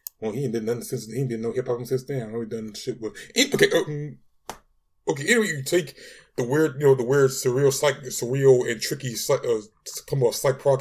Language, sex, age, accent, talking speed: English, male, 20-39, American, 205 wpm